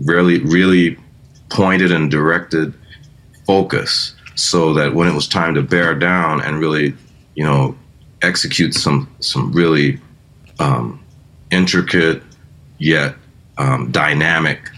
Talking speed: 115 wpm